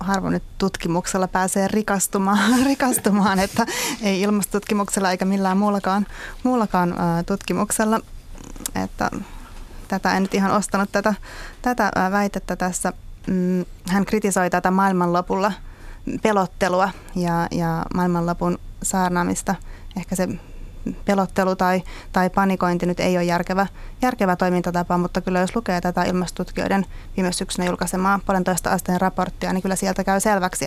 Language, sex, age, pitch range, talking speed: Finnish, female, 20-39, 175-195 Hz, 120 wpm